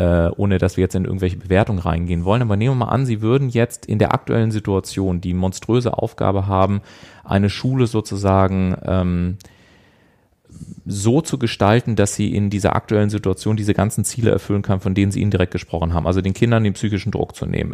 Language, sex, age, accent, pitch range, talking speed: German, male, 30-49, German, 95-115 Hz, 195 wpm